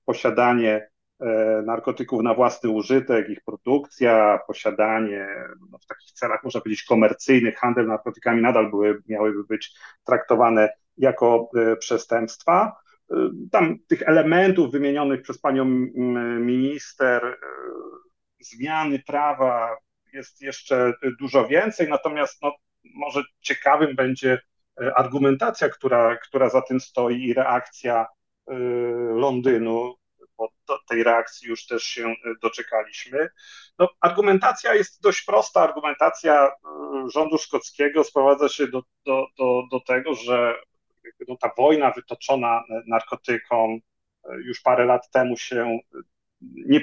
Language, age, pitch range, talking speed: Polish, 40-59, 115-140 Hz, 100 wpm